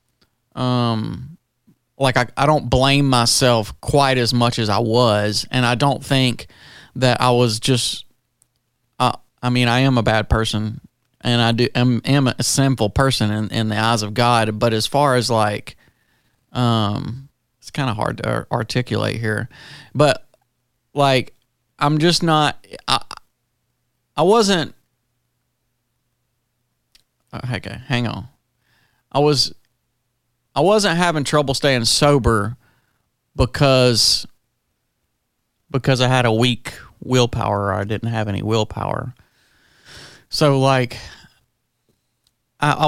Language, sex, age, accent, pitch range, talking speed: English, male, 30-49, American, 115-135 Hz, 130 wpm